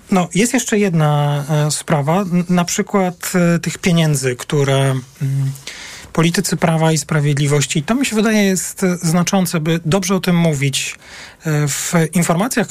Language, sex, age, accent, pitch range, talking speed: Polish, male, 40-59, native, 140-175 Hz, 130 wpm